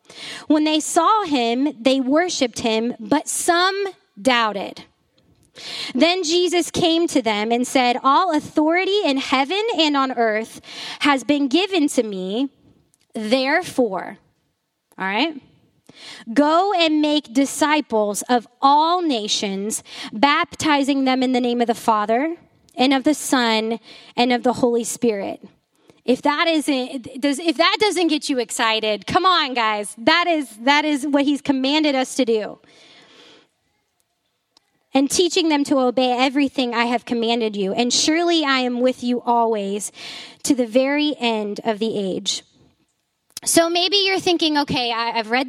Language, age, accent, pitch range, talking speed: English, 20-39, American, 235-310 Hz, 145 wpm